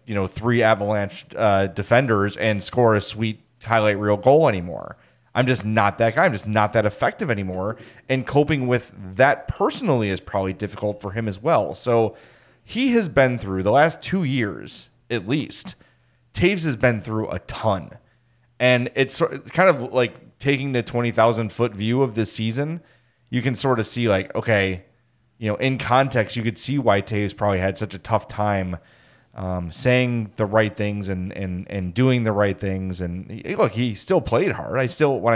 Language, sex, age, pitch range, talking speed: English, male, 30-49, 105-135 Hz, 190 wpm